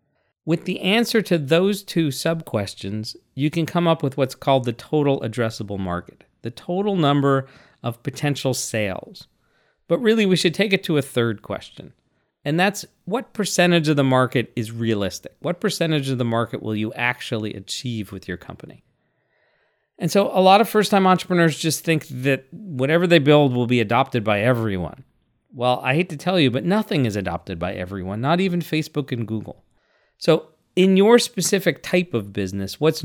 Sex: male